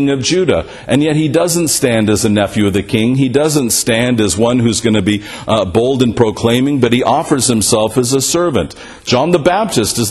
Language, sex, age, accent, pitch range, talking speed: English, male, 50-69, American, 95-130 Hz, 220 wpm